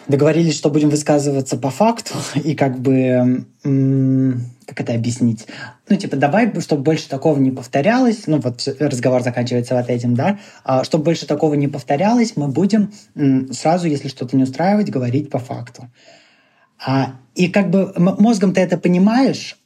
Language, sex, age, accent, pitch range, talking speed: Russian, male, 20-39, native, 125-160 Hz, 150 wpm